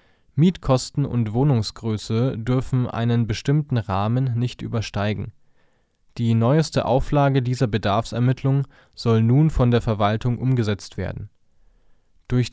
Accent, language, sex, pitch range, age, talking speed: German, German, male, 110-130 Hz, 20-39, 105 wpm